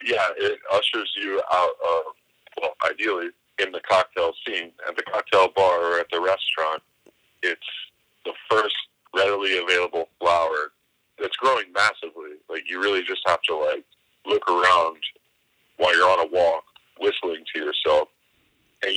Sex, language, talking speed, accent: male, English, 150 wpm, American